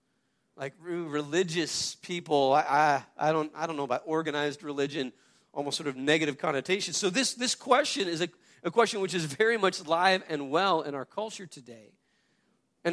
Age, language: 40-59, English